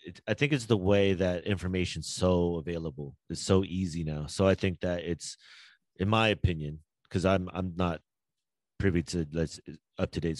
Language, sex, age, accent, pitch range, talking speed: English, male, 30-49, American, 80-90 Hz, 165 wpm